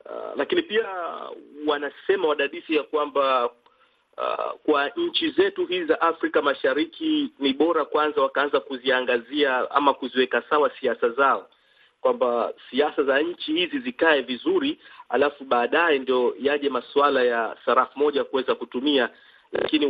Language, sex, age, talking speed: Swahili, male, 40-59, 135 wpm